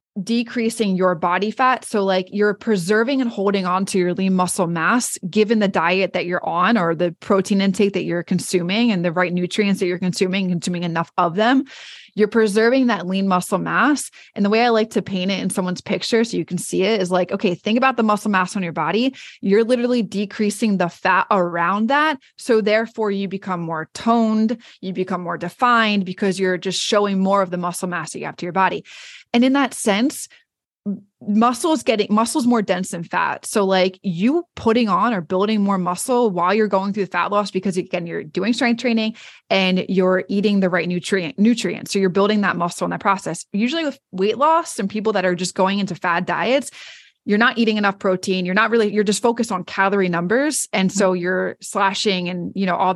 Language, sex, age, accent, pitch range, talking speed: English, female, 20-39, American, 185-225 Hz, 215 wpm